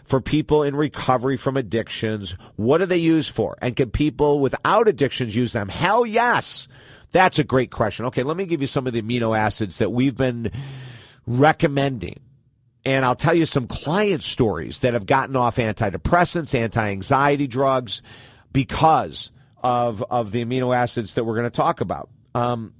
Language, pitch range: English, 110-140 Hz